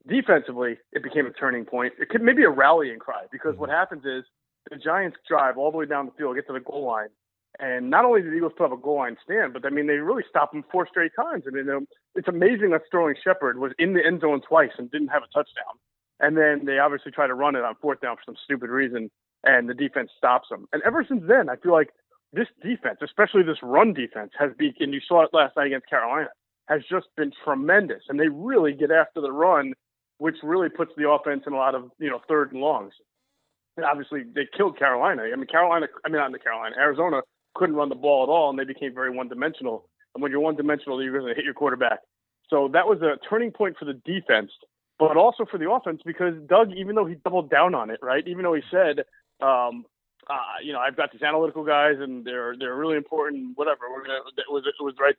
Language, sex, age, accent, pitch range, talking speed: English, male, 30-49, American, 135-170 Hz, 245 wpm